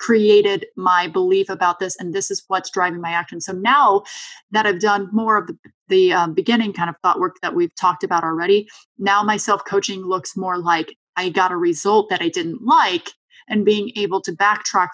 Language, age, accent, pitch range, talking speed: English, 20-39, American, 180-220 Hz, 205 wpm